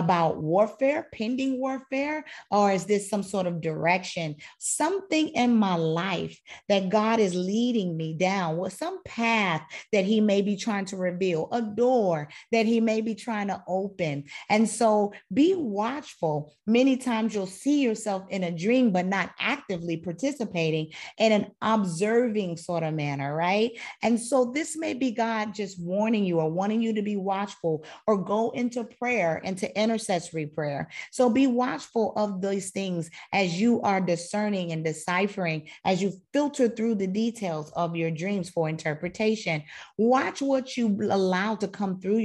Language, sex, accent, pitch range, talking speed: English, female, American, 175-230 Hz, 165 wpm